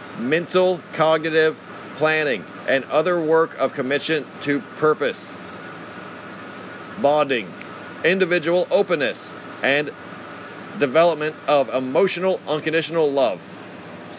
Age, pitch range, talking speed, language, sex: 40-59, 155-180 Hz, 80 wpm, English, male